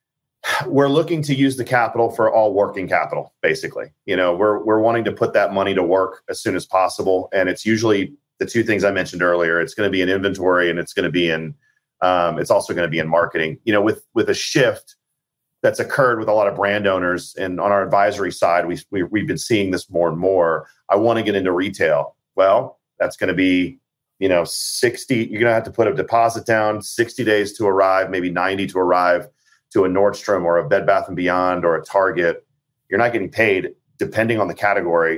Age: 40-59